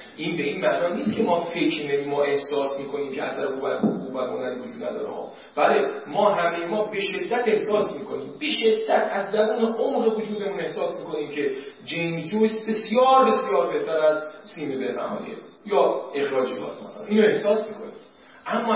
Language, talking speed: Persian, 175 wpm